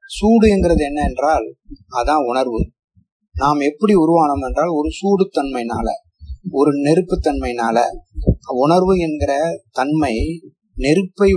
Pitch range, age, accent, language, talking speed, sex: 120-180 Hz, 30-49, native, Tamil, 90 wpm, male